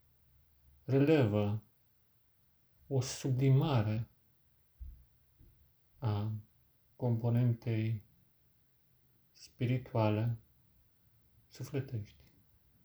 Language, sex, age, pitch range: Romanian, male, 40-59, 105-135 Hz